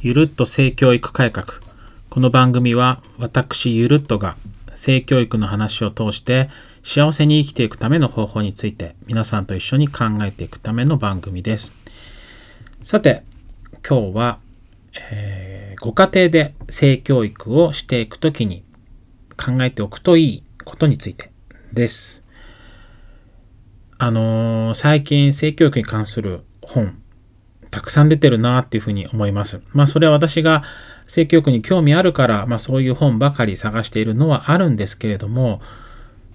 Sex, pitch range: male, 105-135 Hz